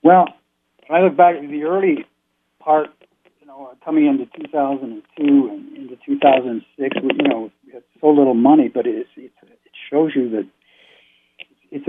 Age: 60-79